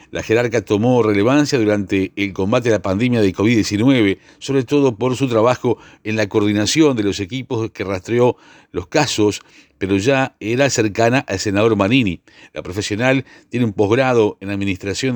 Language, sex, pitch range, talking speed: Spanish, male, 100-130 Hz, 160 wpm